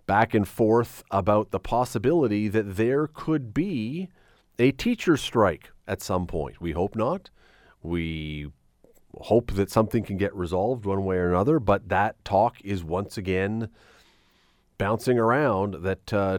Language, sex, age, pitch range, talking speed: English, male, 40-59, 95-125 Hz, 145 wpm